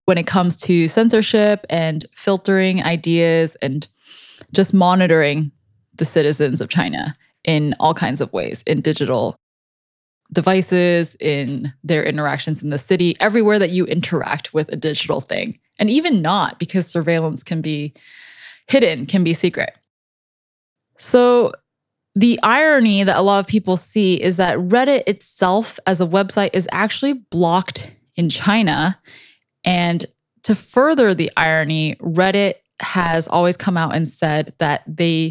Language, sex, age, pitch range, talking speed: English, female, 10-29, 155-200 Hz, 140 wpm